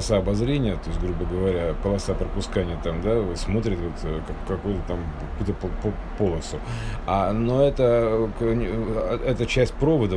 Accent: native